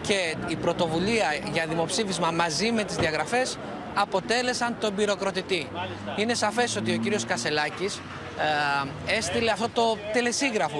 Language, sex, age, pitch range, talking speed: Greek, male, 20-39, 165-220 Hz, 130 wpm